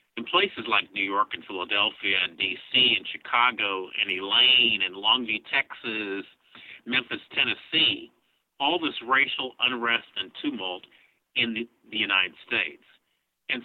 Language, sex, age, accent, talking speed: English, male, 50-69, American, 130 wpm